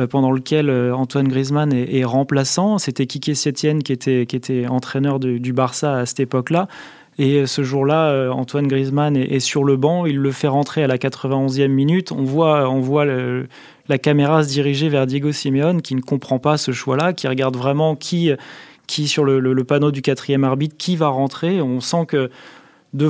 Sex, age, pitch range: male, 20-39, 130-150 Hz